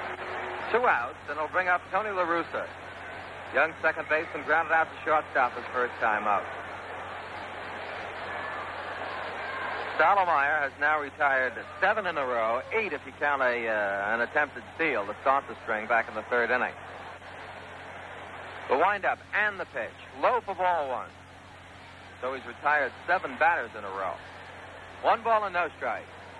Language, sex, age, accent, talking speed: English, male, 60-79, American, 155 wpm